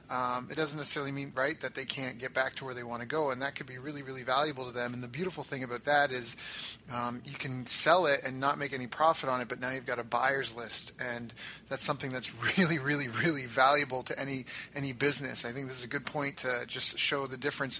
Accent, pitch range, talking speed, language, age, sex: American, 130-150 Hz, 255 wpm, English, 30-49, male